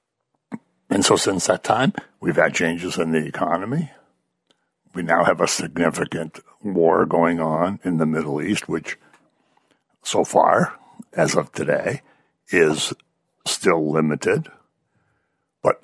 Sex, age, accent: male, 60-79, American